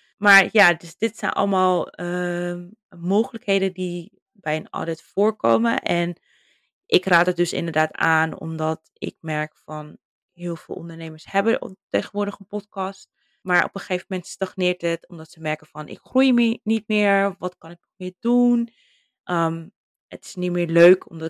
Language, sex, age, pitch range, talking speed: Dutch, female, 20-39, 165-205 Hz, 170 wpm